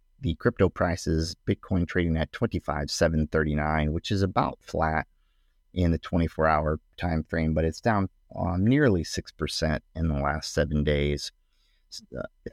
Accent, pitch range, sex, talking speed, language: American, 75-90 Hz, male, 135 wpm, English